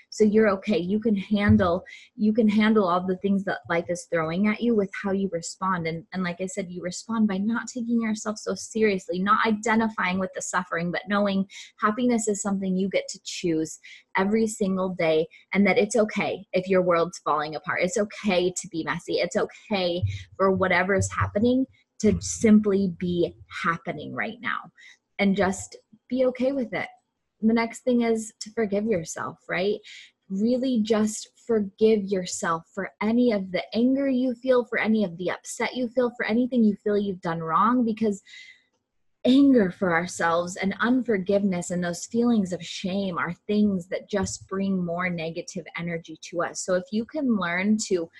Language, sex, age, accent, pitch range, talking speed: English, female, 20-39, American, 175-220 Hz, 180 wpm